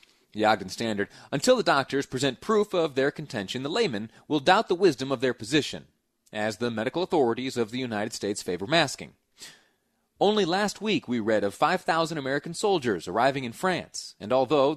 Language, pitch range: English, 115-175 Hz